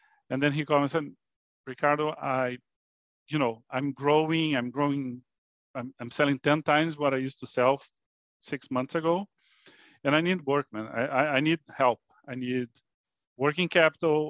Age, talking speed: 40-59, 170 wpm